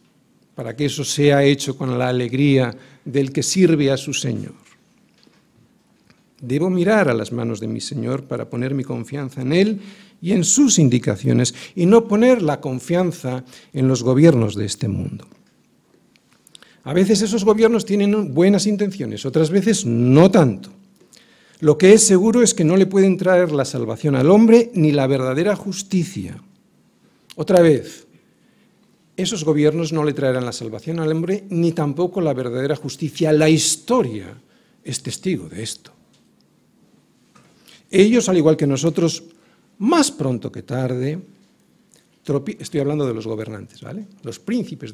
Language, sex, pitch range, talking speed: Spanish, male, 130-190 Hz, 150 wpm